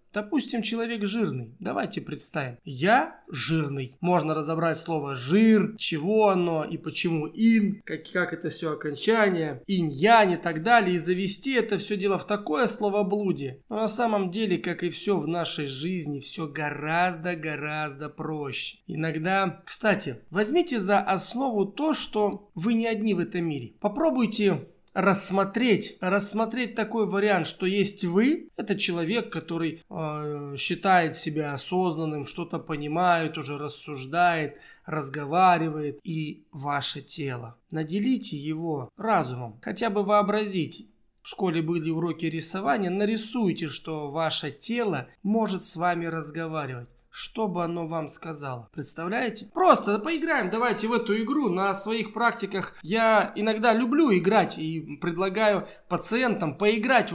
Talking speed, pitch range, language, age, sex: 130 wpm, 160-210 Hz, Russian, 20-39, male